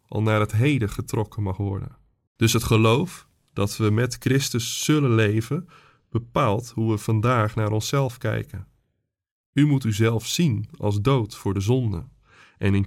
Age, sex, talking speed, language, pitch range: 20-39, male, 160 wpm, Dutch, 105-125 Hz